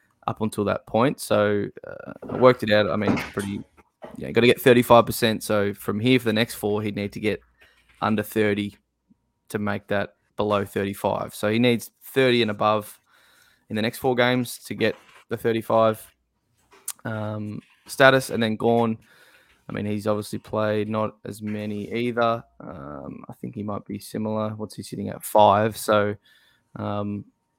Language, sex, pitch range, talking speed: English, male, 105-115 Hz, 175 wpm